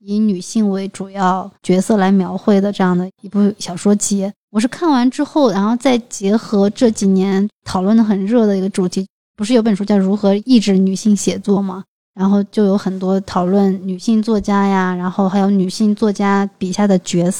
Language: Chinese